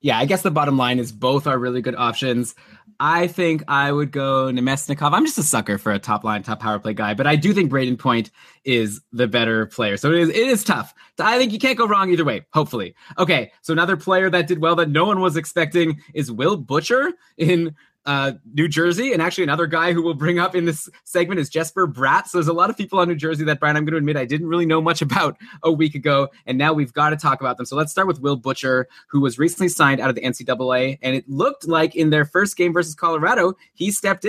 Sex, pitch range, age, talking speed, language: male, 140-175 Hz, 20-39, 255 wpm, English